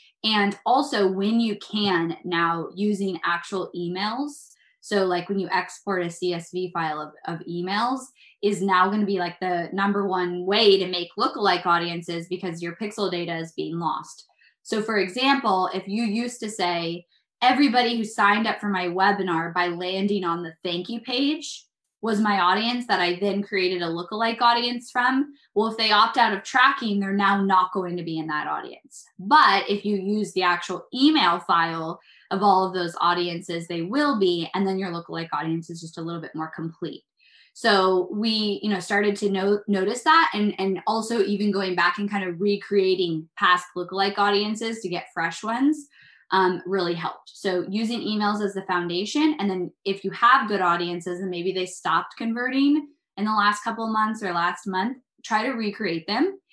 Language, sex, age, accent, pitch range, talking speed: English, female, 10-29, American, 175-220 Hz, 190 wpm